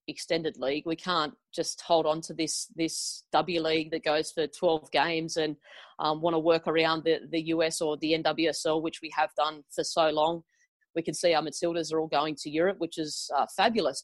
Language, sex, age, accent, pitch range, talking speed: English, female, 30-49, Australian, 160-185 Hz, 215 wpm